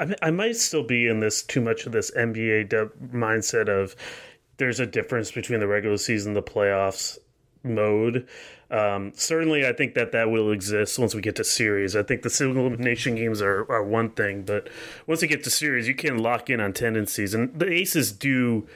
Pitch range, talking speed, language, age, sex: 110-130 Hz, 200 wpm, English, 30-49, male